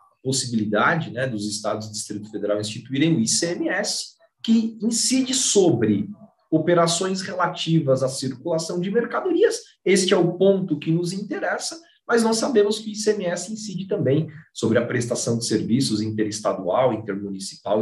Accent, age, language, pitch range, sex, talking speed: Brazilian, 40-59, Portuguese, 150-220 Hz, male, 140 wpm